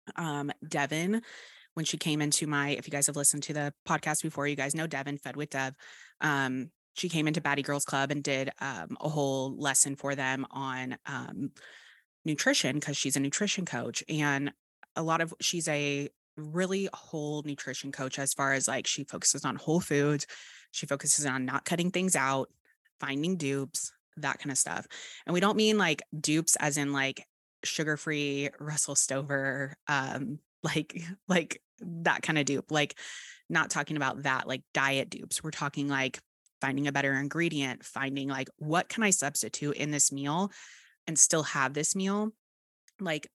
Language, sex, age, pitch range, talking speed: English, female, 20-39, 140-165 Hz, 175 wpm